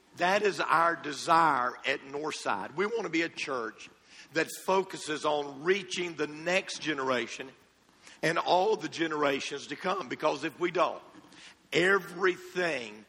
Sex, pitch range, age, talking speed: male, 155-185 Hz, 50-69, 140 wpm